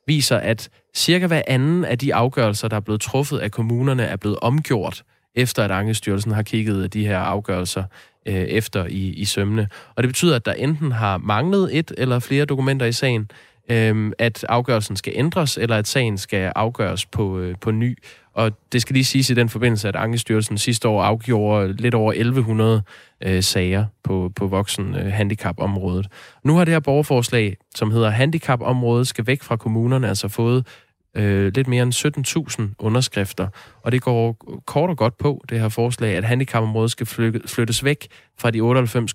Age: 20-39